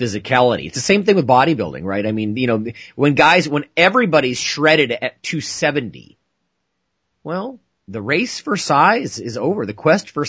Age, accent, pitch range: 30-49, American, 110-150 Hz